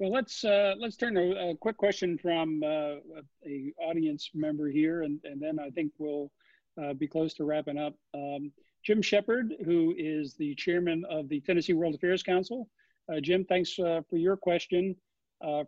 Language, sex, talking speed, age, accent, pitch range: English, male, 185 wpm, 50-69, American, 155-185 Hz